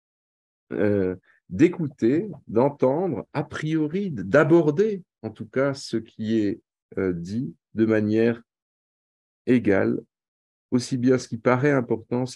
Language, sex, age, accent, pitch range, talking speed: French, male, 50-69, French, 105-145 Hz, 115 wpm